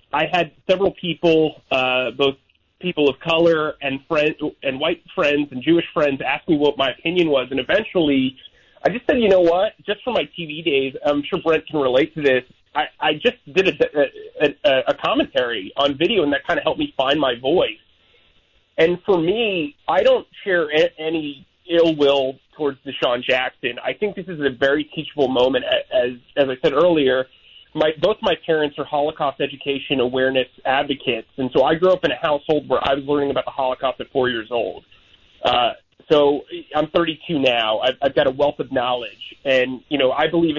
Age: 30-49